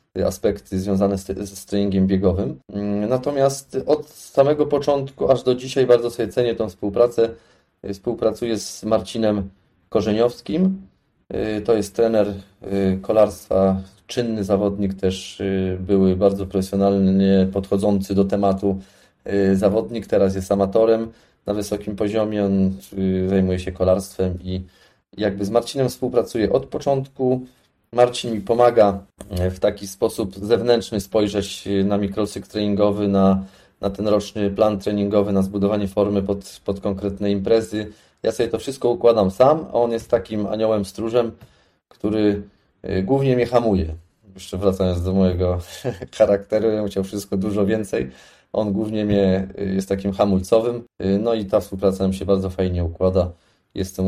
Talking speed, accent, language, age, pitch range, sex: 130 wpm, native, Polish, 20-39, 95-110 Hz, male